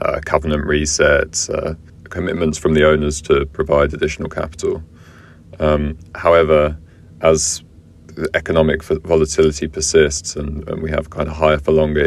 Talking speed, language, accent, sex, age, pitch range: 135 wpm, English, British, male, 30-49, 75-80 Hz